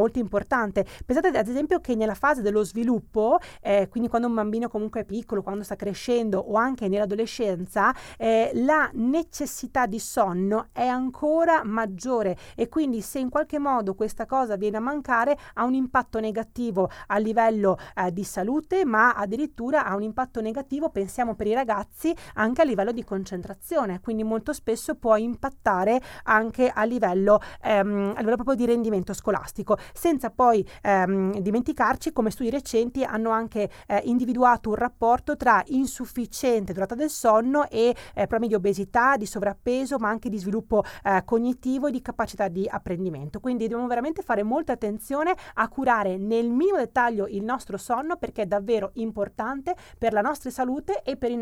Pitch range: 205-255 Hz